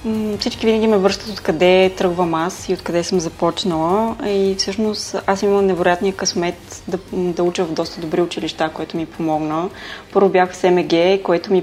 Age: 20-39